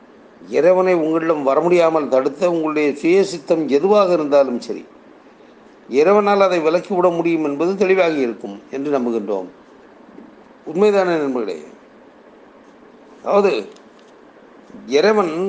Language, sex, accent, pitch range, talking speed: Tamil, male, native, 155-190 Hz, 90 wpm